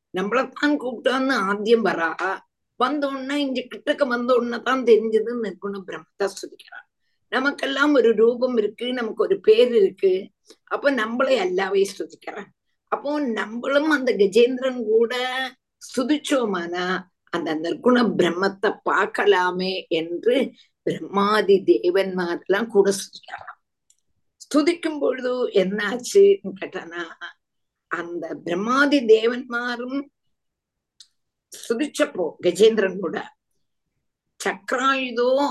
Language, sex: Tamil, female